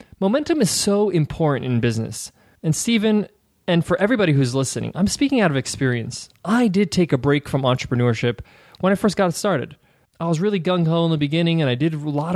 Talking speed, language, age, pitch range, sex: 205 wpm, English, 20-39, 140-180 Hz, male